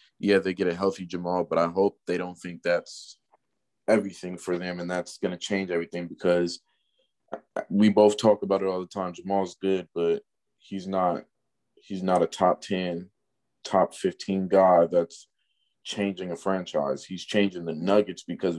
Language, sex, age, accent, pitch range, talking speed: English, male, 20-39, American, 90-100 Hz, 170 wpm